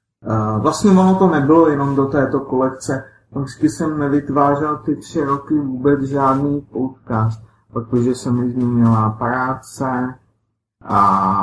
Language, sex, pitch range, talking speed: Czech, male, 115-150 Hz, 125 wpm